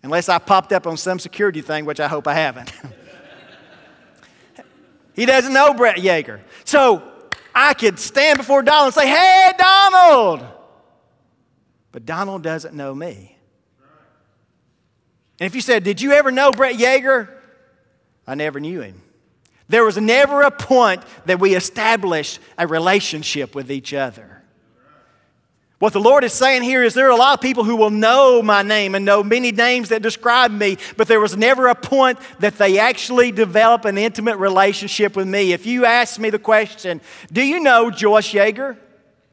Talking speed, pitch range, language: 170 wpm, 150-240 Hz, English